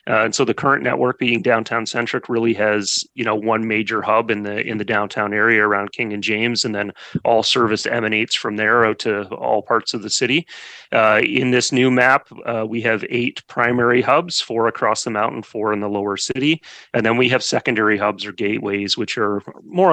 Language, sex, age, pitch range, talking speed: English, male, 30-49, 105-120 Hz, 210 wpm